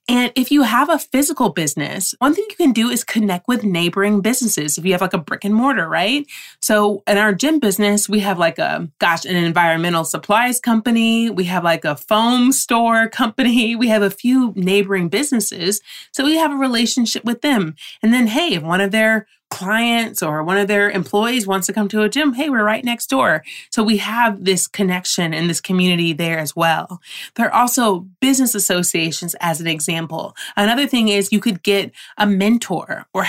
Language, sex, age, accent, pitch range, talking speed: English, female, 30-49, American, 180-235 Hz, 200 wpm